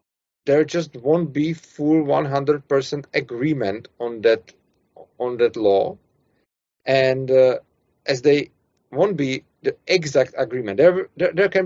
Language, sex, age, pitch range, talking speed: Czech, male, 40-59, 130-155 Hz, 140 wpm